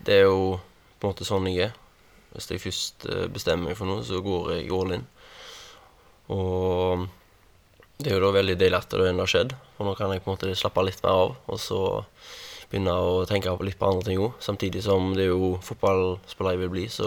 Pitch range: 95-120 Hz